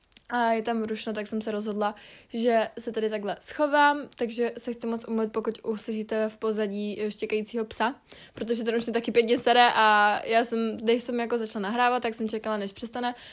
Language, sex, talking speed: Czech, female, 200 wpm